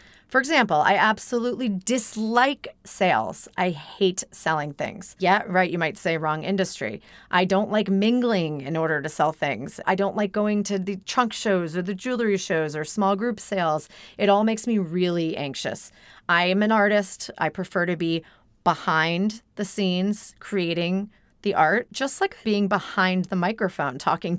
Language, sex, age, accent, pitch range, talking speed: English, female, 30-49, American, 165-215 Hz, 170 wpm